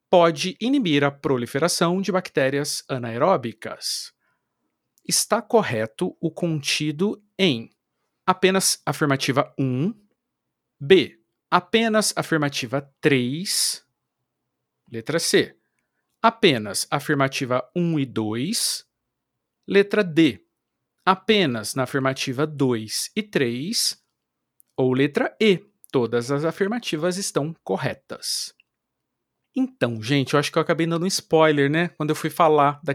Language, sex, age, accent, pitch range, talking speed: Portuguese, male, 50-69, Brazilian, 140-185 Hz, 105 wpm